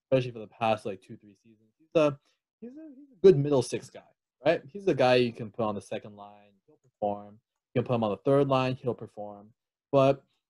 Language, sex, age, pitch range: English, male, 20-39, 110-140 Hz